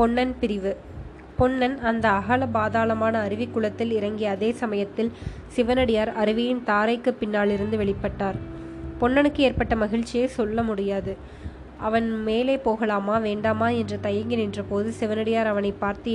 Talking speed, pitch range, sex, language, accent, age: 105 wpm, 210-235 Hz, female, Tamil, native, 20-39